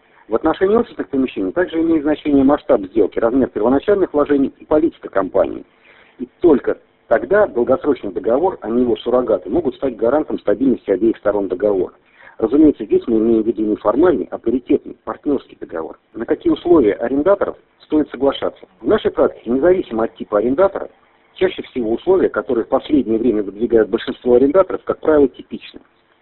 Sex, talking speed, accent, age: male, 160 wpm, native, 50-69